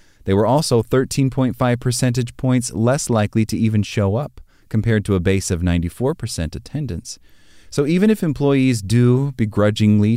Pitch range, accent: 90-120 Hz, American